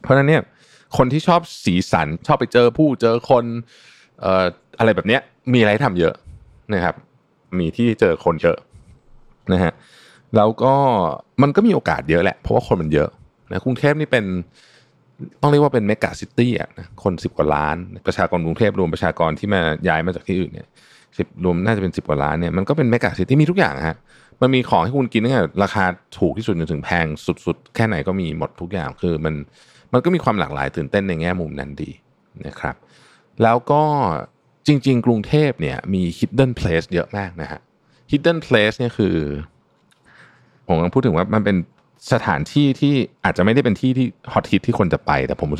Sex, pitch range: male, 90-130 Hz